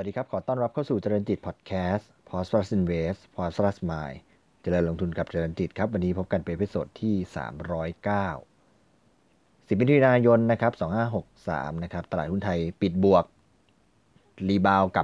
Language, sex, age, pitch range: Thai, male, 30-49, 90-110 Hz